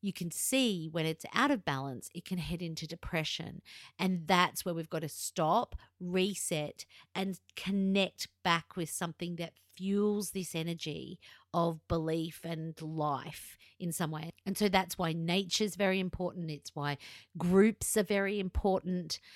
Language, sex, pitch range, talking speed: English, female, 150-180 Hz, 160 wpm